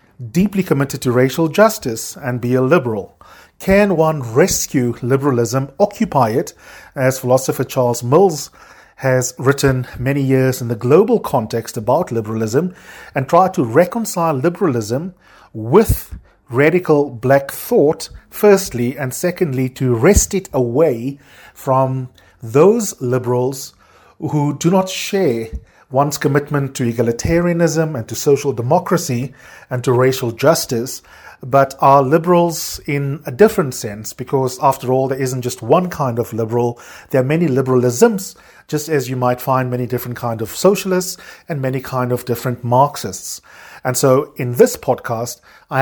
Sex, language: male, English